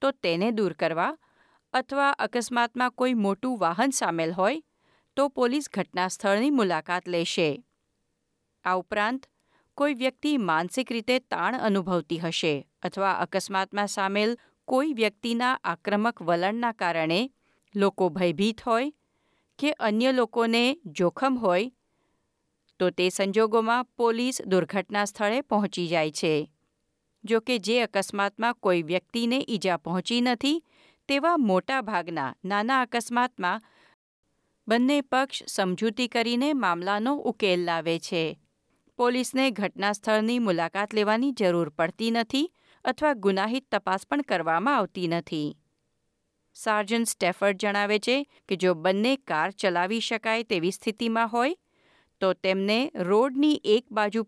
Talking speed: 100 wpm